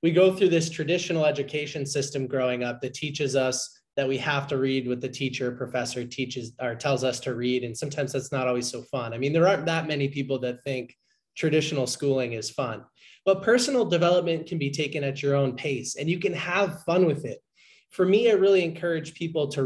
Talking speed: 215 wpm